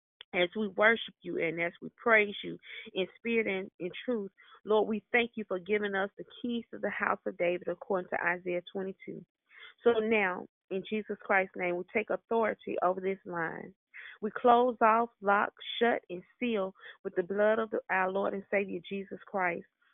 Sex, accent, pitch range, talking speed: female, American, 180-215 Hz, 185 wpm